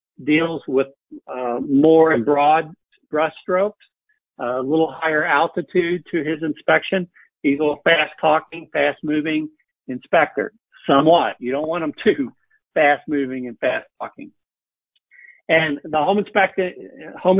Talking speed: 130 wpm